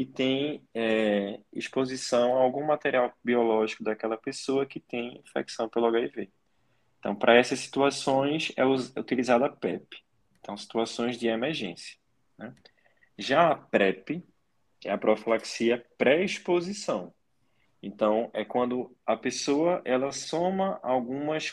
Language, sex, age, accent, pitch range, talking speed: Portuguese, male, 20-39, Brazilian, 110-130 Hz, 125 wpm